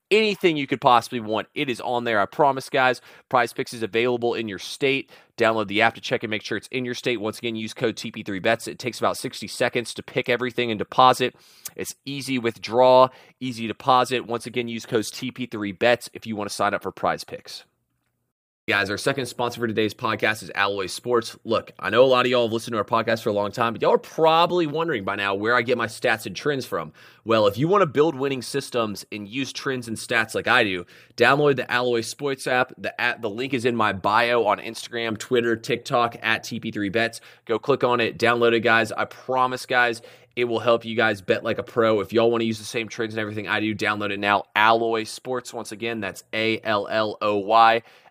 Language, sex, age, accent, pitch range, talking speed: English, male, 30-49, American, 110-125 Hz, 225 wpm